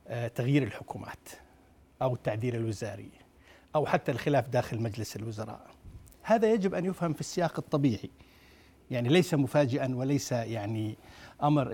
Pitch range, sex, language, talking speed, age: 120-150 Hz, male, Arabic, 125 wpm, 60-79